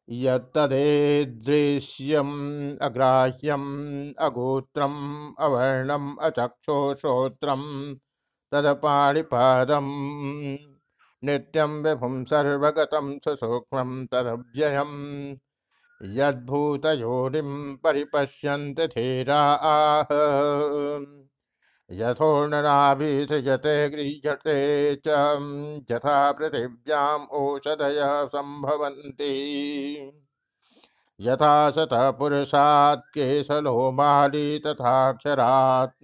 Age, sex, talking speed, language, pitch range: 60-79, male, 35 wpm, Hindi, 135-145 Hz